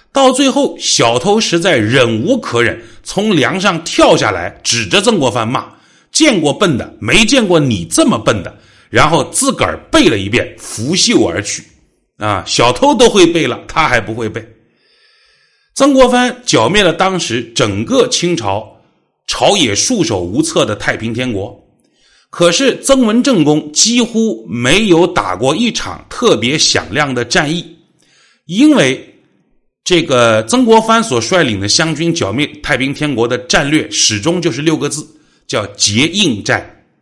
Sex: male